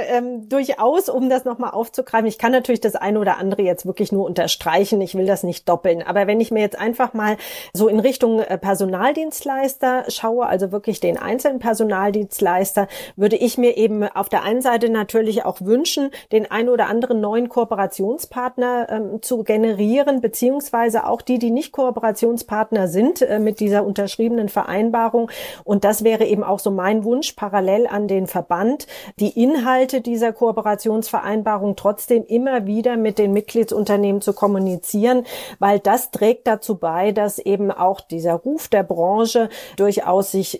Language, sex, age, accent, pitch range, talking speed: German, female, 30-49, German, 200-240 Hz, 160 wpm